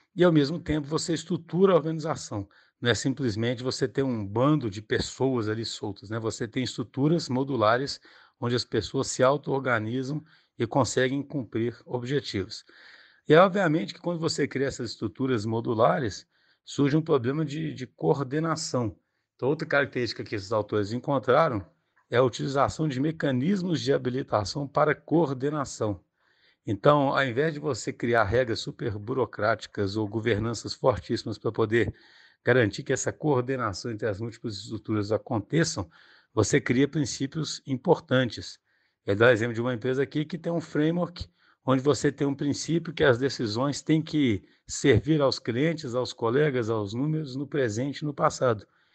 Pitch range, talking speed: 120-150 Hz, 155 wpm